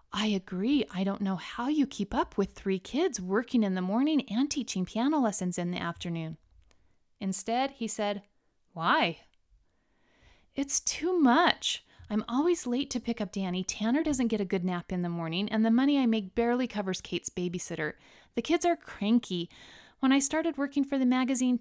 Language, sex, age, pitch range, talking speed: English, female, 30-49, 185-255 Hz, 185 wpm